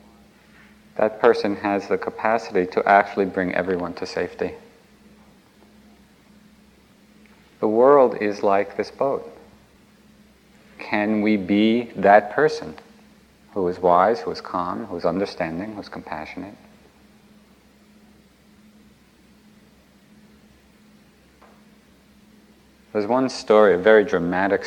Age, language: 50-69, English